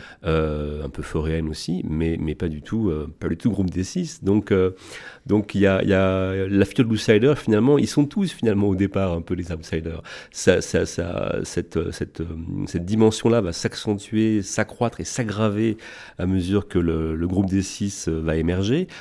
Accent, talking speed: French, 195 wpm